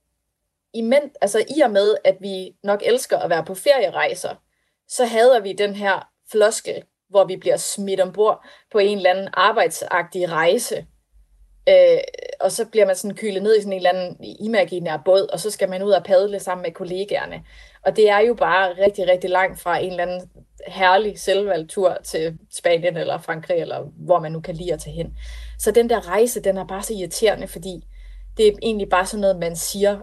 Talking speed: 190 wpm